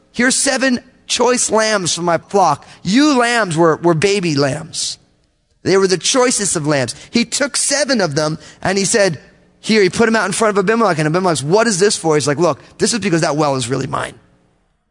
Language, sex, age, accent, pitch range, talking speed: English, male, 30-49, American, 150-220 Hz, 215 wpm